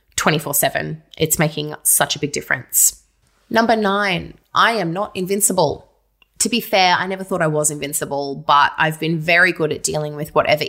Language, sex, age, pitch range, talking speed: English, female, 20-39, 150-180 Hz, 170 wpm